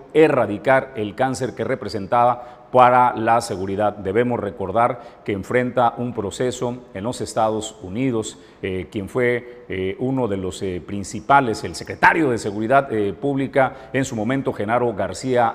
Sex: male